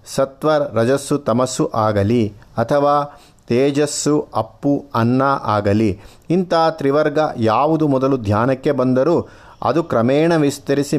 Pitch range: 115-150 Hz